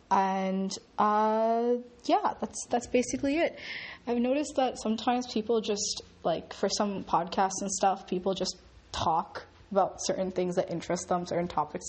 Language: English